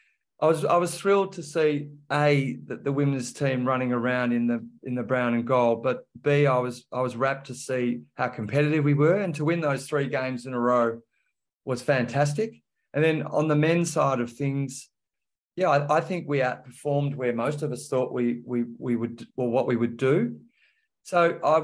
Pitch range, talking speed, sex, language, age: 125-150 Hz, 210 wpm, male, English, 30-49